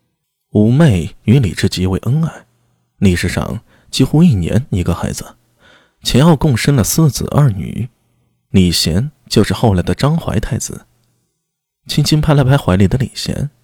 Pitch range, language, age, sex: 95-140 Hz, Chinese, 20-39, male